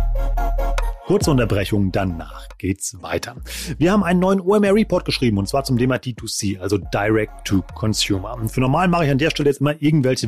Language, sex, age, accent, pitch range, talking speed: German, male, 30-49, German, 110-145 Hz, 170 wpm